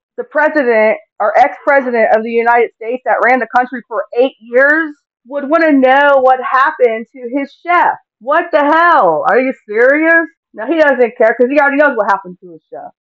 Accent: American